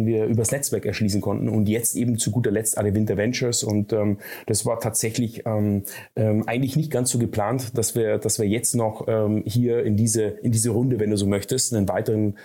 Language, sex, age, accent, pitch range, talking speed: German, male, 30-49, German, 105-120 Hz, 215 wpm